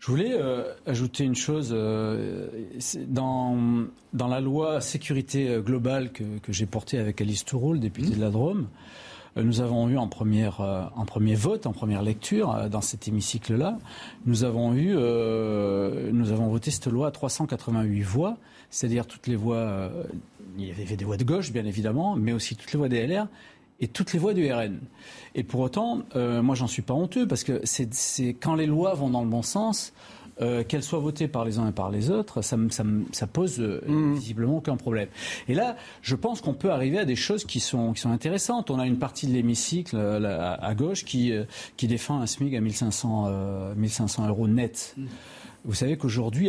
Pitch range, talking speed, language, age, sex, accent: 110-140 Hz, 210 wpm, French, 40-59, male, French